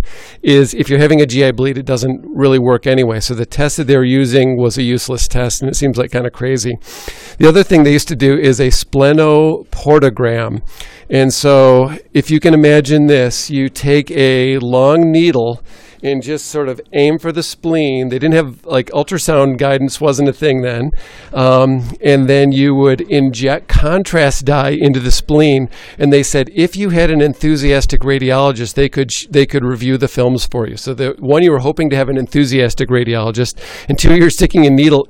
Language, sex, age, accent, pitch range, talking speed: English, male, 50-69, American, 130-150 Hz, 200 wpm